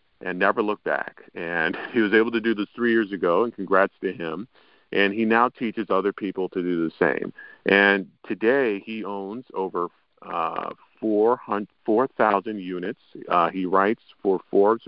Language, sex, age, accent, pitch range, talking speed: English, male, 50-69, American, 90-105 Hz, 170 wpm